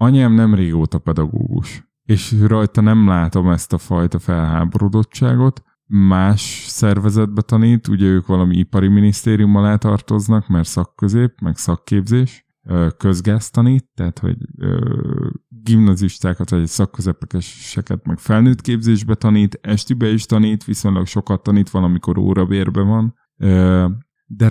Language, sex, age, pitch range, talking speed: Hungarian, male, 20-39, 95-115 Hz, 120 wpm